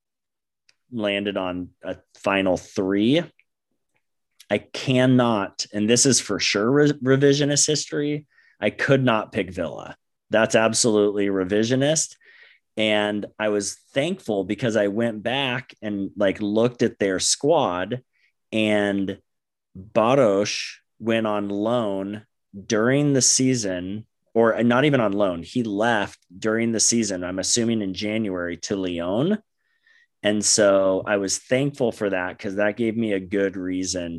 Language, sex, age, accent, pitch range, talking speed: English, male, 30-49, American, 95-120 Hz, 130 wpm